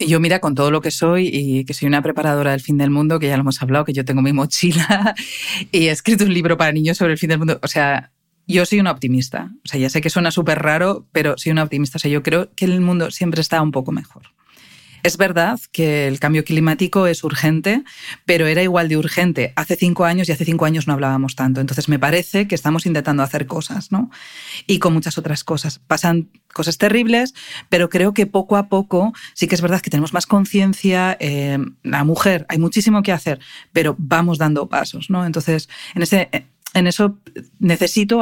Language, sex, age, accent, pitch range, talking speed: Spanish, female, 40-59, Spanish, 150-185 Hz, 220 wpm